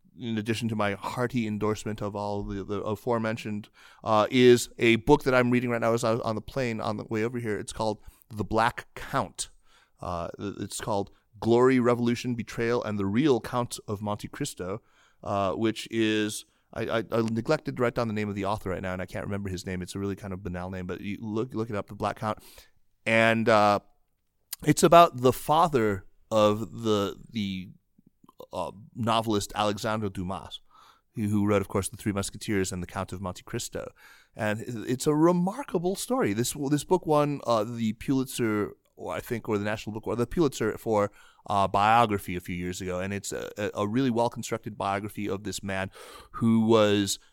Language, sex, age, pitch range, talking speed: English, male, 30-49, 100-120 Hz, 200 wpm